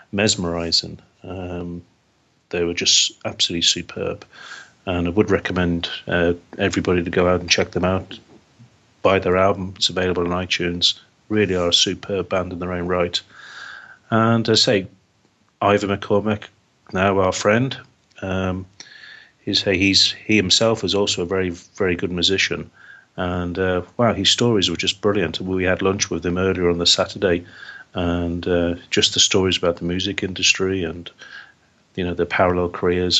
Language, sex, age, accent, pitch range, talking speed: English, male, 40-59, British, 90-100 Hz, 160 wpm